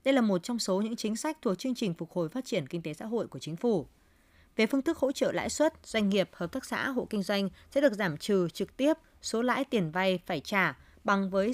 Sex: female